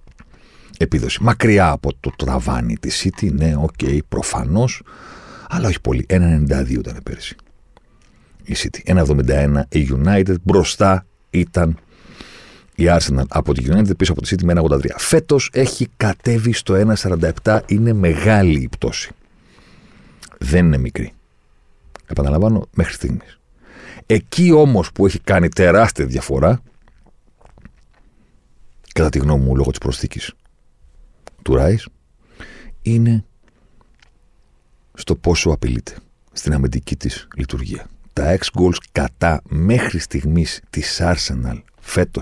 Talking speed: 115 wpm